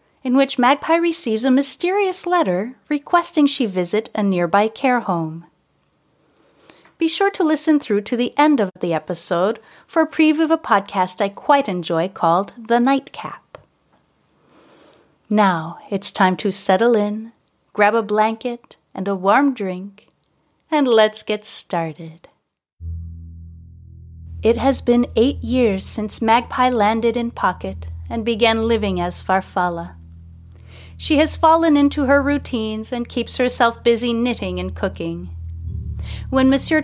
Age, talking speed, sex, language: 30-49, 135 wpm, female, English